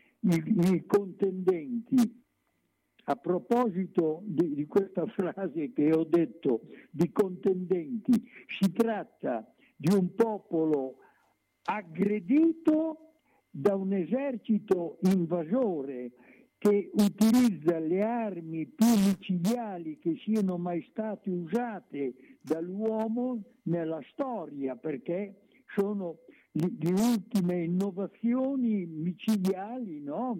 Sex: male